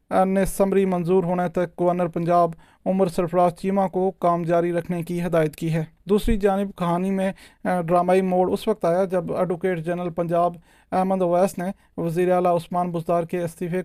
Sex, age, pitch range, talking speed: male, 40-59, 175-190 Hz, 175 wpm